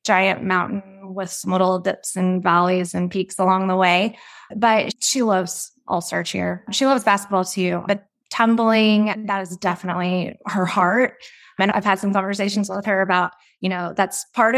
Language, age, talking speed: English, 20-39, 175 wpm